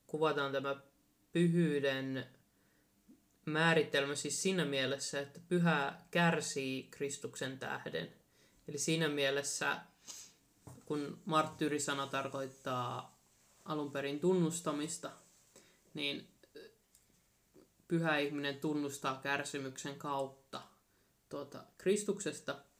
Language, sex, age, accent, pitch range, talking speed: Finnish, male, 20-39, native, 140-155 Hz, 75 wpm